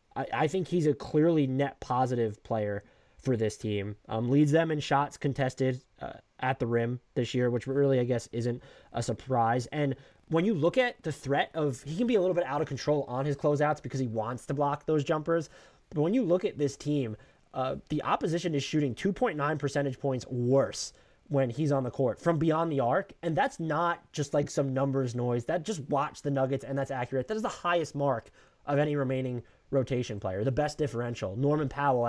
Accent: American